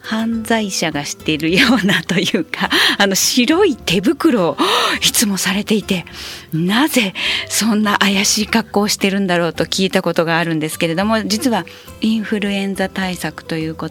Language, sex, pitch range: Japanese, female, 170-245 Hz